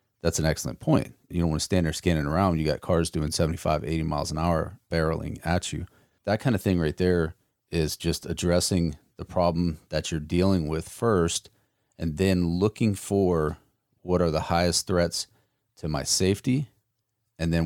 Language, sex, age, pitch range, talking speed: English, male, 30-49, 80-95 Hz, 185 wpm